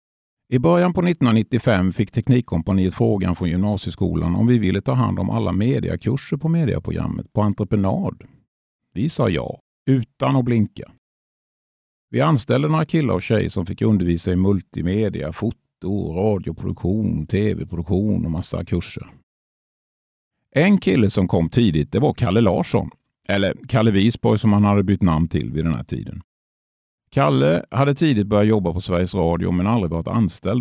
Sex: male